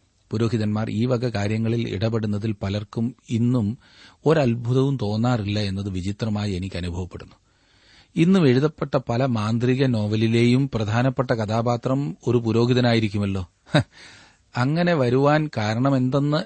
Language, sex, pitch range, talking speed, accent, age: Malayalam, male, 100-135 Hz, 90 wpm, native, 40-59